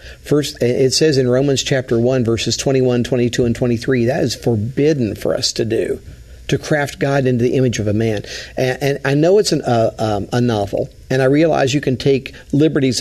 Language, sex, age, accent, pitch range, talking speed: English, male, 50-69, American, 120-145 Hz, 210 wpm